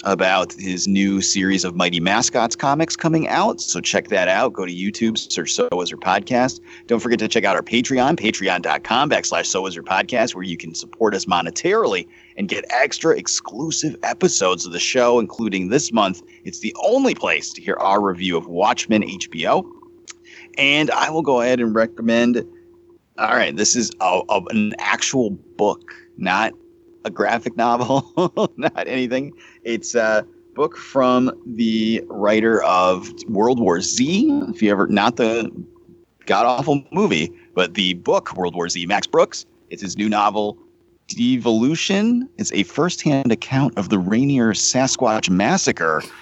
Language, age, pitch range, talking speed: English, 30-49, 100-160 Hz, 160 wpm